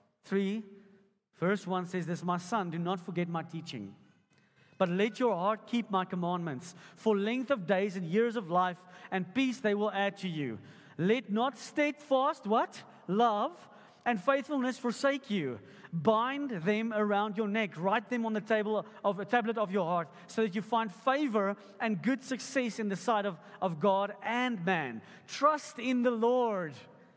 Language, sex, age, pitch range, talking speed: English, male, 40-59, 200-265 Hz, 175 wpm